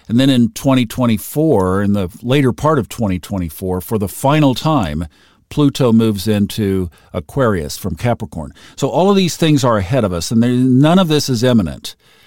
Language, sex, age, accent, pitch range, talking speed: English, male, 50-69, American, 95-130 Hz, 170 wpm